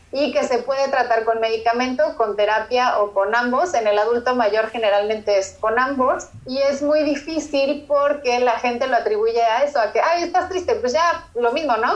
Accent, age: Mexican, 30-49